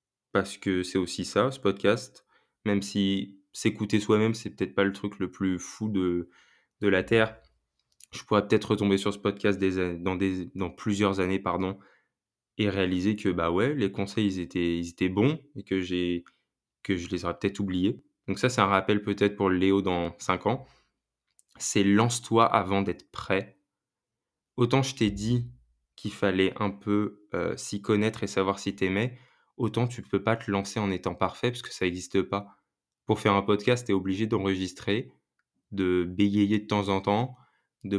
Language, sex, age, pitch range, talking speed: French, male, 20-39, 95-110 Hz, 190 wpm